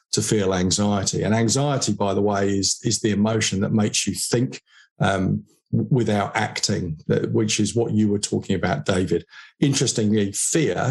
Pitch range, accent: 105-130 Hz, British